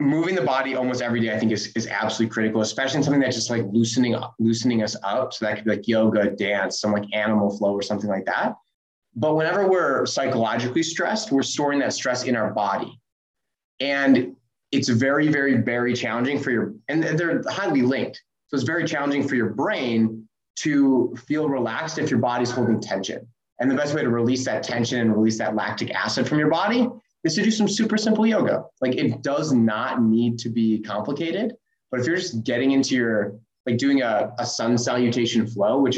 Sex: male